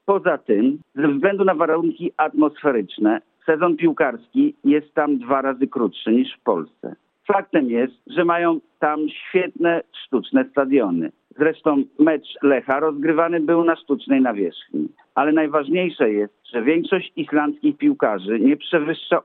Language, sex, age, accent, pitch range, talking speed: Polish, male, 50-69, native, 135-180 Hz, 130 wpm